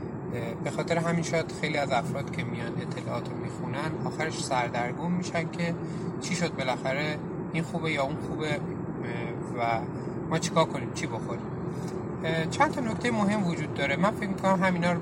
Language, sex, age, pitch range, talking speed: Persian, male, 30-49, 155-180 Hz, 170 wpm